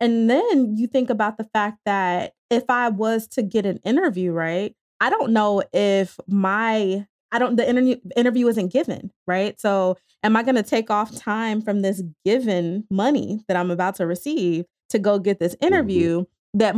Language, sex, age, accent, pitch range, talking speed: English, female, 20-39, American, 180-225 Hz, 185 wpm